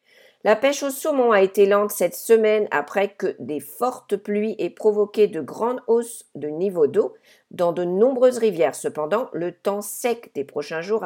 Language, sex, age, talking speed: English, female, 50-69, 180 wpm